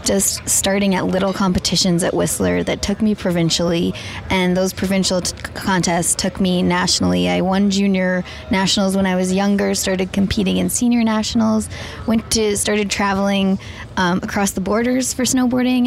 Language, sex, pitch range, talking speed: English, female, 170-200 Hz, 160 wpm